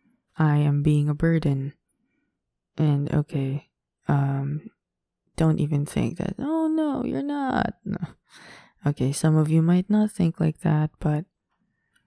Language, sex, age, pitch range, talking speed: English, female, 20-39, 145-175 Hz, 130 wpm